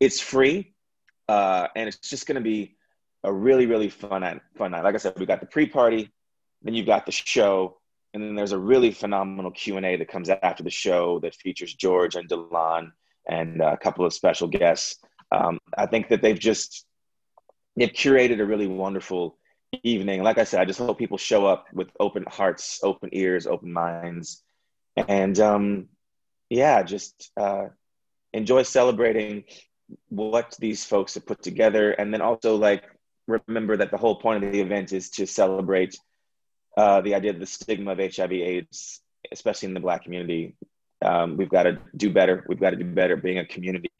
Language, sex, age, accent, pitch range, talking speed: English, male, 30-49, American, 90-105 Hz, 185 wpm